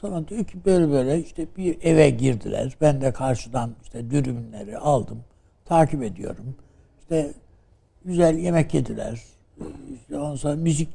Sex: male